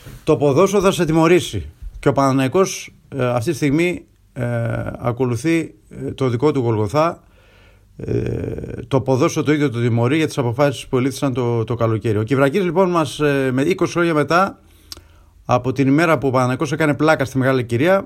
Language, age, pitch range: Greek, 30-49, 120-180 Hz